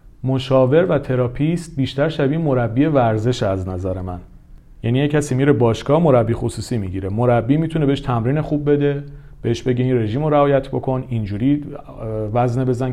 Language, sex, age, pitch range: Persian, male, 40-59, 110-145 Hz